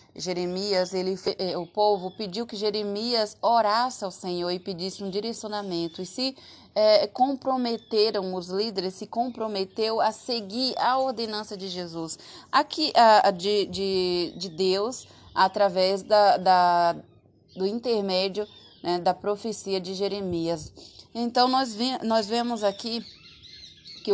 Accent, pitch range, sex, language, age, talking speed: Brazilian, 195-250 Hz, female, Portuguese, 20-39, 125 wpm